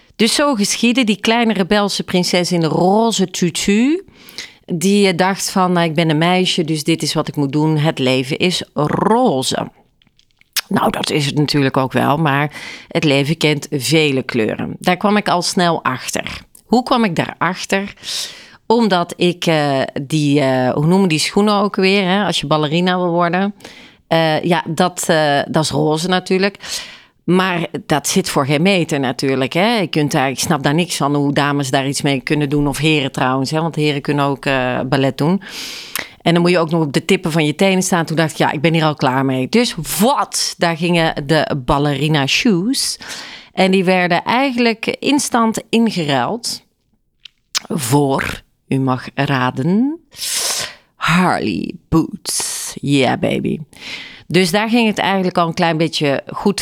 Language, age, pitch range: Dutch, 40-59, 150-195 Hz